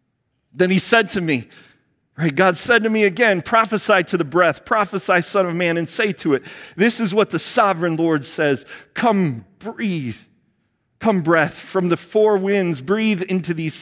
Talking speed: 175 wpm